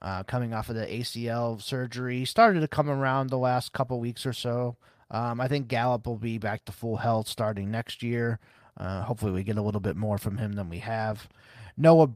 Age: 30-49